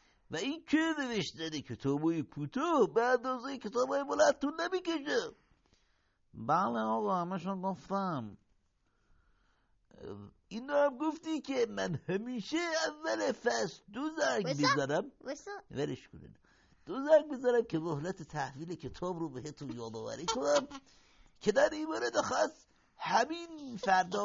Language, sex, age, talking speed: Persian, male, 60-79, 125 wpm